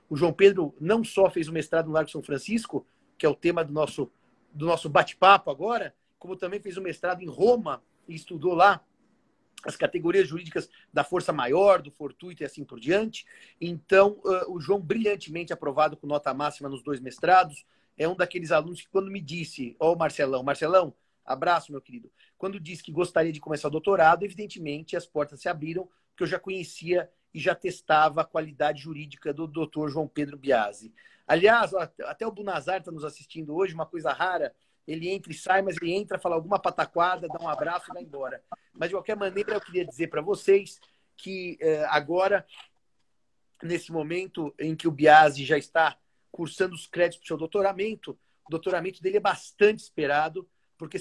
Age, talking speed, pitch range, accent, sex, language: 40-59, 185 wpm, 155-190 Hz, Brazilian, male, Portuguese